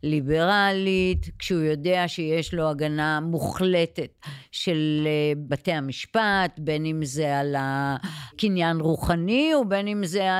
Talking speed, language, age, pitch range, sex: 110 wpm, Hebrew, 50-69, 155-195 Hz, female